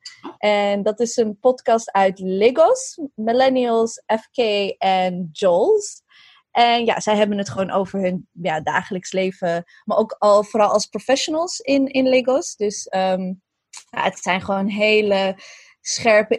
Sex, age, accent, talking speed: female, 20-39, Dutch, 145 wpm